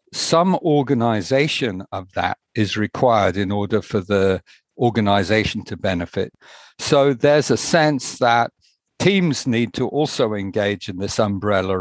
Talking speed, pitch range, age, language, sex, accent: 130 wpm, 100-130 Hz, 50-69, English, male, British